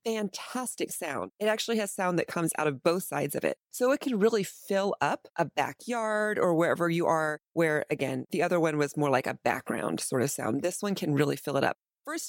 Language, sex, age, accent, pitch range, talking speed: English, female, 30-49, American, 160-215 Hz, 230 wpm